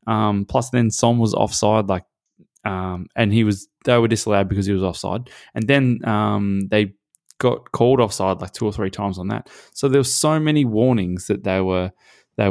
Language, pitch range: English, 95-115 Hz